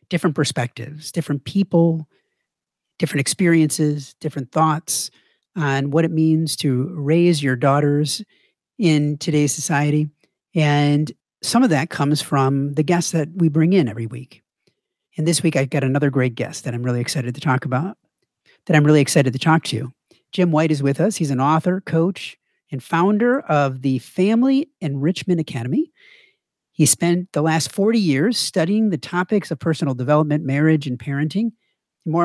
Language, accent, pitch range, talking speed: English, American, 145-180 Hz, 165 wpm